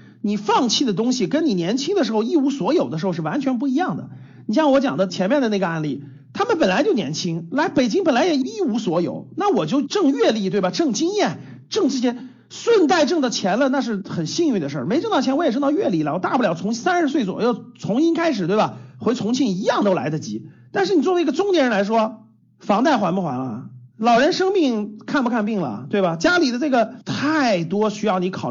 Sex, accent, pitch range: male, native, 180-275 Hz